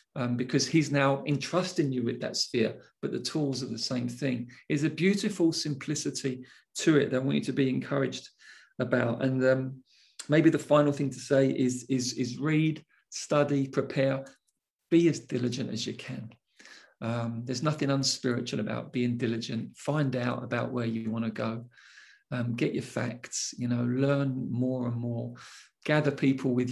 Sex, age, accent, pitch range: male, 40-59, British, 120-135 Hz